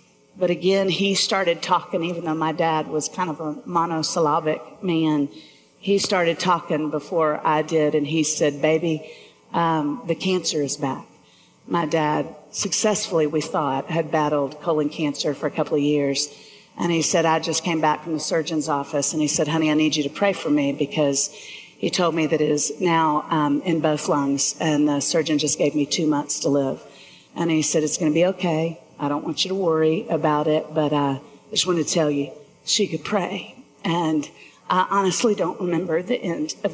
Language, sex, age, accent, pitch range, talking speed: English, female, 50-69, American, 150-195 Hz, 200 wpm